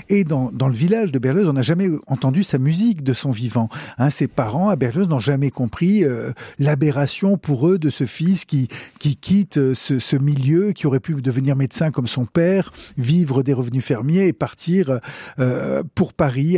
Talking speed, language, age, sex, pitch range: 195 wpm, French, 50-69, male, 135-170 Hz